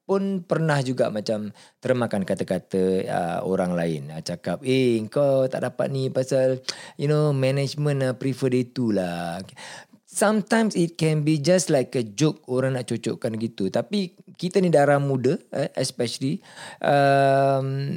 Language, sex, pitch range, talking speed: Malay, male, 115-160 Hz, 150 wpm